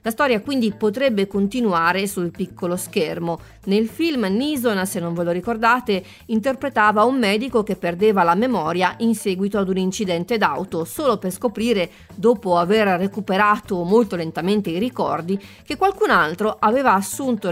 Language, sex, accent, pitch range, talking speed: Italian, female, native, 185-240 Hz, 150 wpm